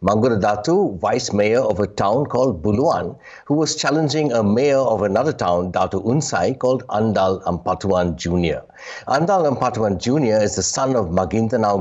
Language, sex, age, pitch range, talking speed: English, male, 60-79, 95-130 Hz, 150 wpm